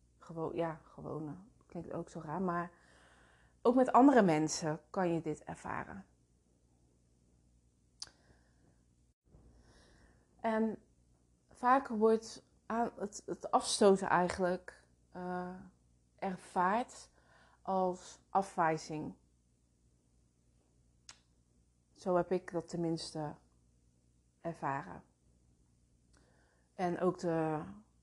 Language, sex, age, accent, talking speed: Dutch, female, 30-49, Dutch, 70 wpm